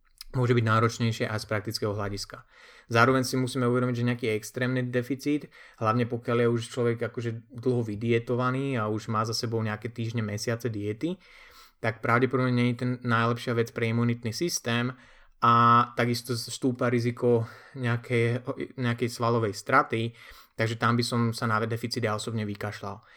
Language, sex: Slovak, male